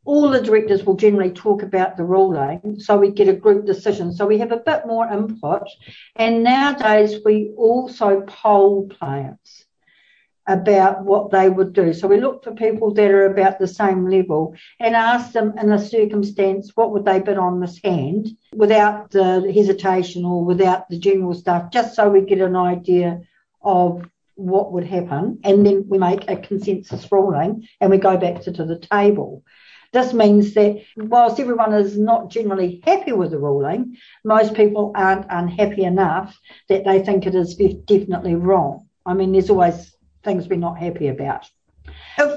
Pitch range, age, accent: 185-215 Hz, 60-79, Australian